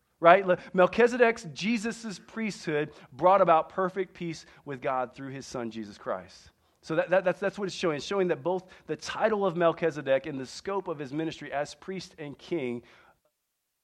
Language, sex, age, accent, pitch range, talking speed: English, male, 40-59, American, 150-195 Hz, 180 wpm